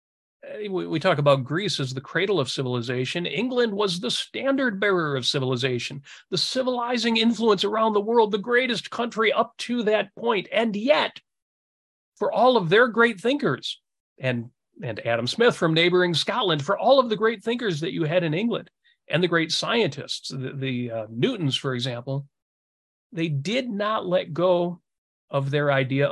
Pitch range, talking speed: 135-215 Hz, 170 wpm